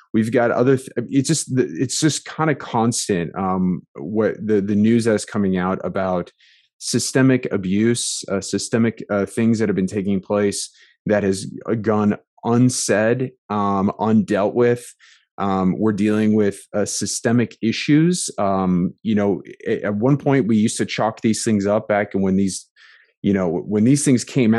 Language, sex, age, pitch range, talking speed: English, male, 20-39, 100-125 Hz, 170 wpm